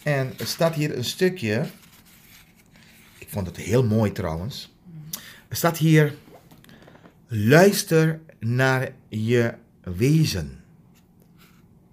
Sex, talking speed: male, 95 wpm